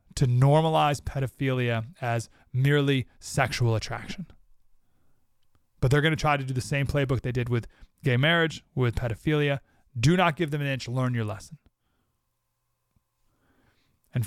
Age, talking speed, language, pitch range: 30-49, 140 wpm, English, 125-160 Hz